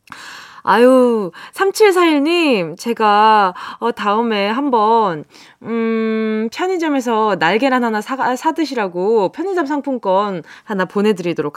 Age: 20-39